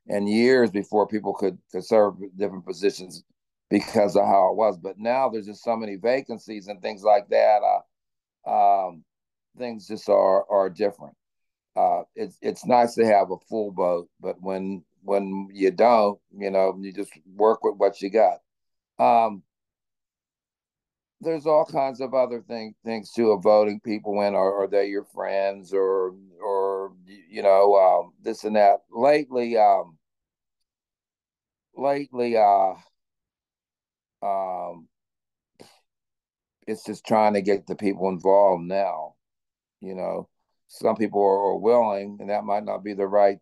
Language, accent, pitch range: English, American, 100-115 Hz